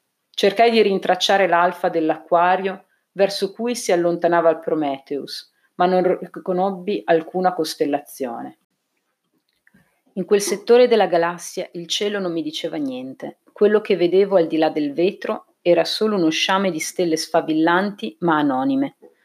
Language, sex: Italian, female